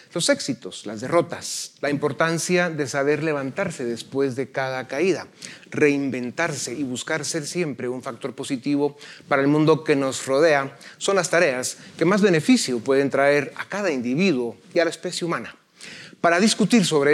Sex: male